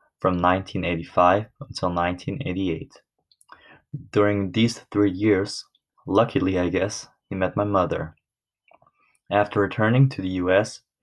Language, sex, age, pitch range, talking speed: English, male, 20-39, 90-110 Hz, 110 wpm